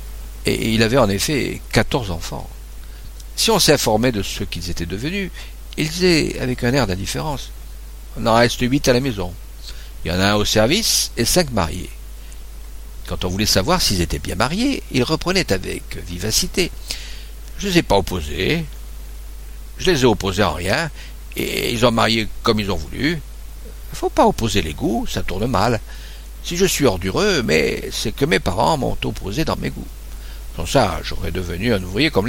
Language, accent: French, French